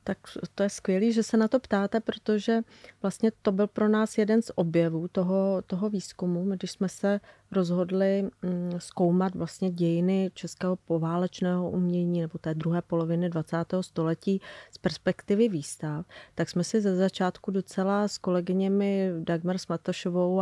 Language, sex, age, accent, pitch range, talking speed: Czech, female, 30-49, native, 175-200 Hz, 145 wpm